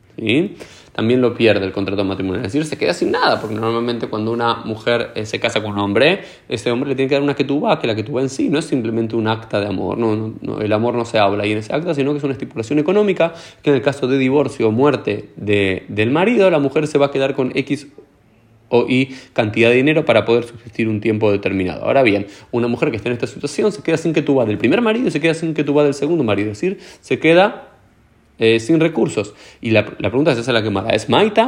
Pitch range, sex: 110-150 Hz, male